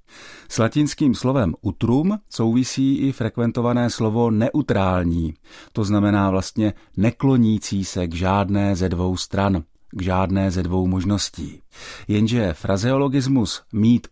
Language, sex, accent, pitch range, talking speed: Czech, male, native, 95-120 Hz, 115 wpm